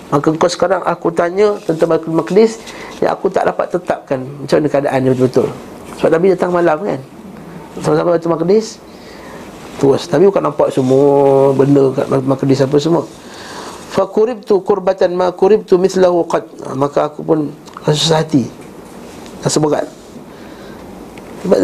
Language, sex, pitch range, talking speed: Malay, male, 155-200 Hz, 140 wpm